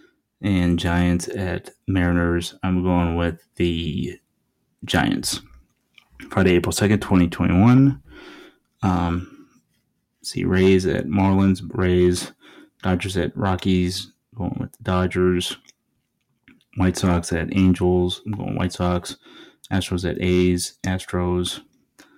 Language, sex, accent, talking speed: English, male, American, 105 wpm